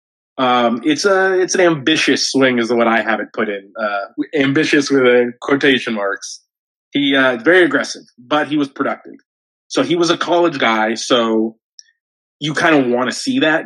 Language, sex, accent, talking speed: English, male, American, 185 wpm